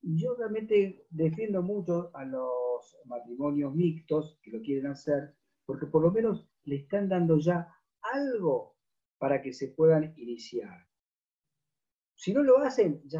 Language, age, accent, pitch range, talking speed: Spanish, 40-59, Argentinian, 135-180 Hz, 140 wpm